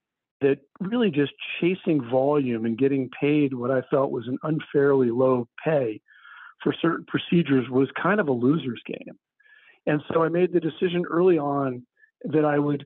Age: 50-69